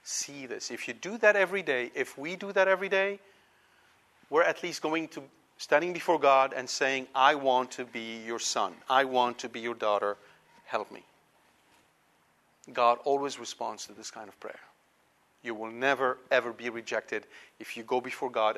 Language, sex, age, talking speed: English, male, 40-59, 185 wpm